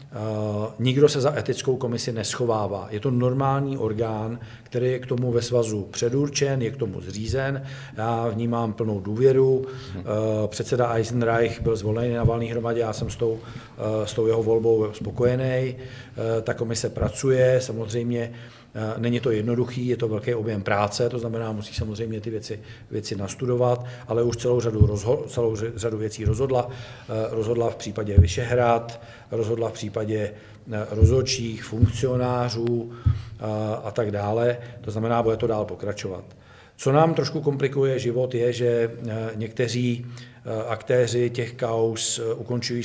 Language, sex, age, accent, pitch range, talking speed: Czech, male, 40-59, native, 110-125 Hz, 145 wpm